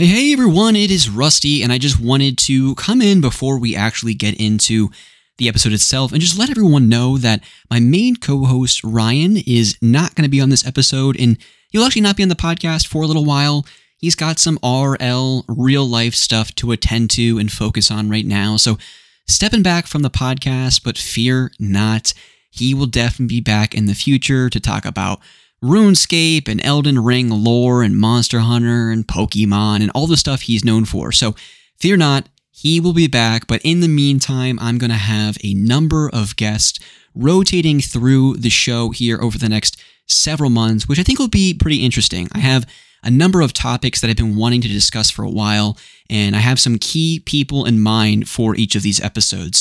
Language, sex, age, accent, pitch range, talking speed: English, male, 20-39, American, 110-145 Hz, 200 wpm